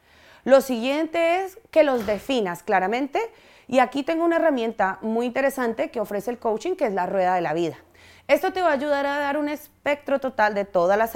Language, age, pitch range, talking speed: Spanish, 30-49, 200-280 Hz, 205 wpm